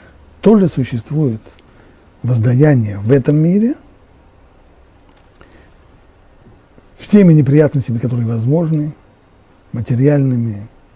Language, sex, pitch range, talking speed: Russian, male, 110-155 Hz, 60 wpm